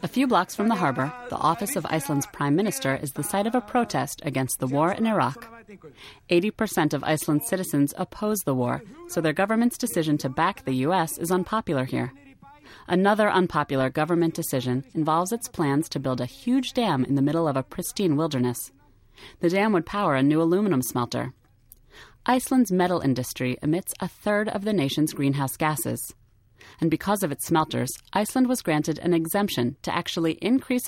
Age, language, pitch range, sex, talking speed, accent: 30-49, English, 135-195 Hz, female, 180 wpm, American